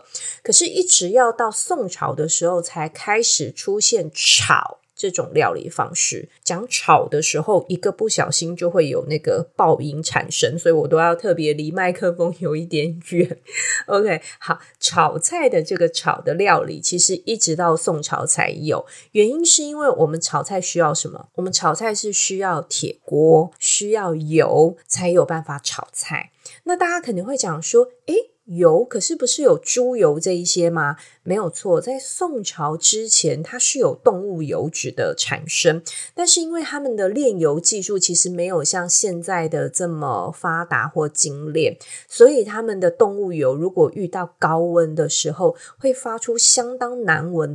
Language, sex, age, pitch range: Chinese, female, 20-39, 160-255 Hz